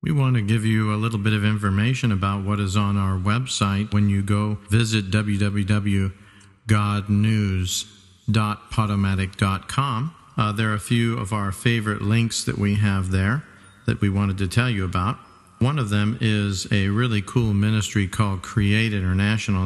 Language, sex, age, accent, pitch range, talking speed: English, male, 50-69, American, 100-115 Hz, 155 wpm